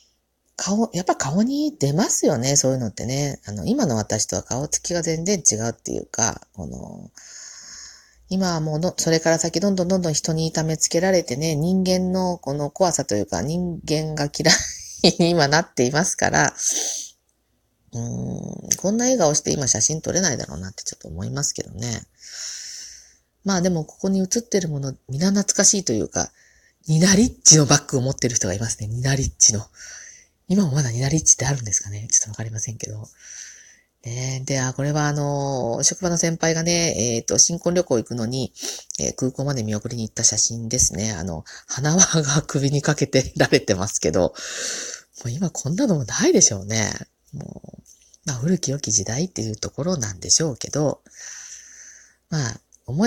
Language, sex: Japanese, female